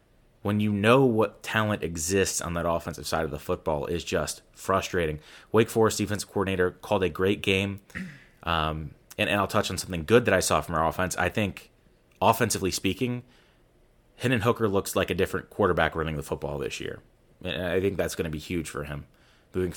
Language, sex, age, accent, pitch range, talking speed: English, male, 30-49, American, 85-100 Hz, 195 wpm